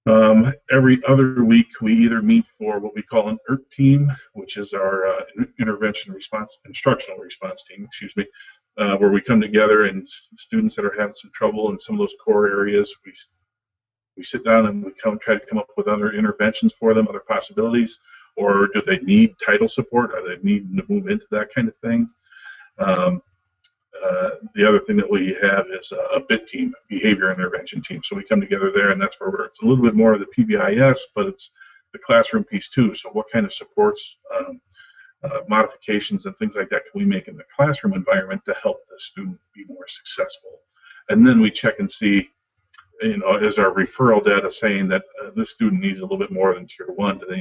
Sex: male